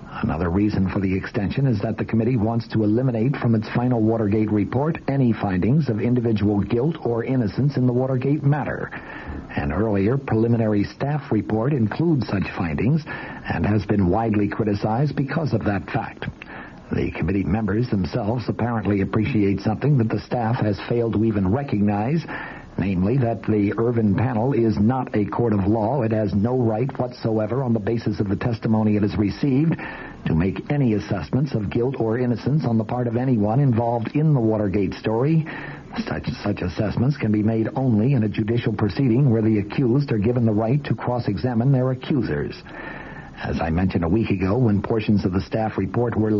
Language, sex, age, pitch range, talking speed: English, male, 60-79, 105-125 Hz, 180 wpm